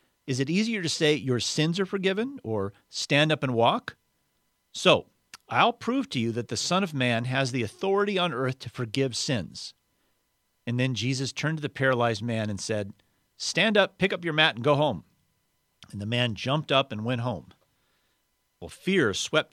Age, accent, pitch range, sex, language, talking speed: 40-59, American, 110-145 Hz, male, English, 190 wpm